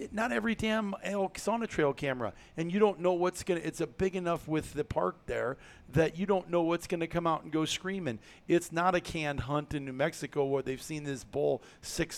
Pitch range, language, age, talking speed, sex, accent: 135-165 Hz, English, 40-59, 235 wpm, male, American